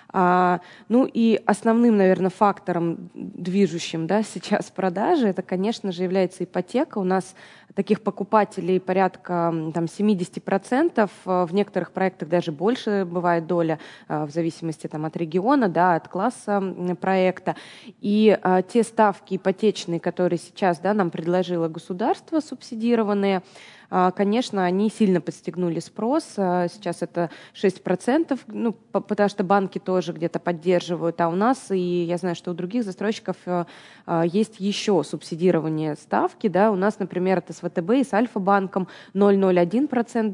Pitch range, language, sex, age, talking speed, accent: 180-215 Hz, Russian, female, 20-39, 125 wpm, native